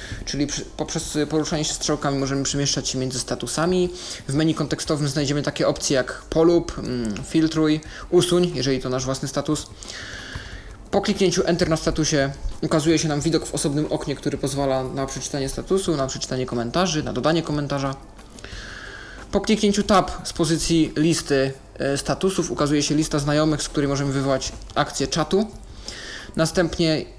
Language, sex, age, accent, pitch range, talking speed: Polish, male, 20-39, native, 135-165 Hz, 145 wpm